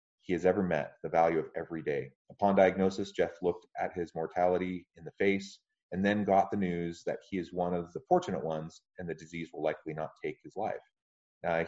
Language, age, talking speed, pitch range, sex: English, 30-49, 215 wpm, 85-100 Hz, male